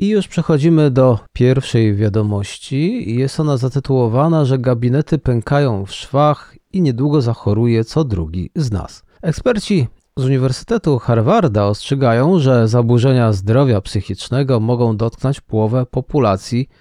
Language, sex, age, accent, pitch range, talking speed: Polish, male, 40-59, native, 115-145 Hz, 125 wpm